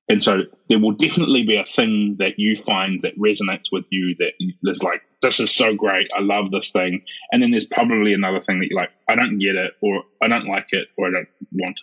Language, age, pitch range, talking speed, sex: English, 20-39, 90-105 Hz, 245 wpm, male